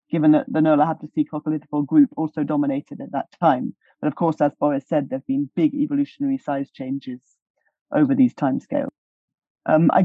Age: 30-49